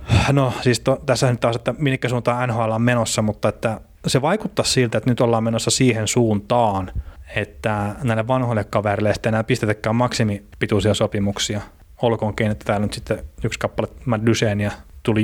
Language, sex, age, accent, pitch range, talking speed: Finnish, male, 30-49, native, 105-125 Hz, 160 wpm